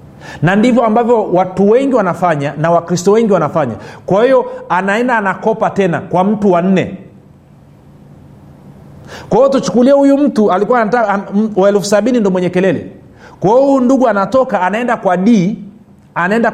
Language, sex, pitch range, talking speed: Swahili, male, 175-225 Hz, 135 wpm